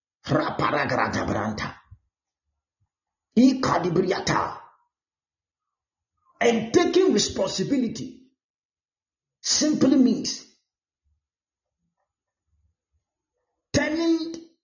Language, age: English, 50-69